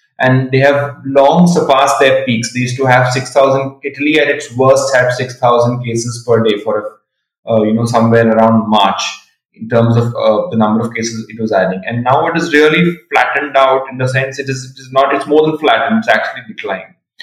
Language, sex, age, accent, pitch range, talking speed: English, male, 20-39, Indian, 115-140 Hz, 215 wpm